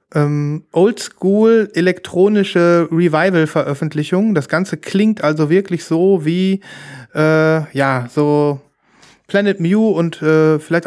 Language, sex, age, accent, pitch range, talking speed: German, male, 30-49, German, 155-195 Hz, 100 wpm